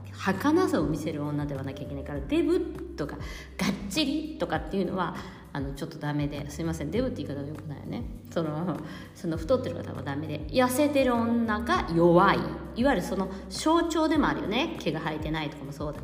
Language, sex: Japanese, female